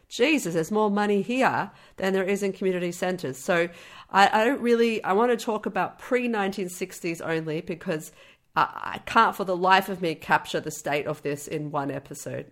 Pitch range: 155-200 Hz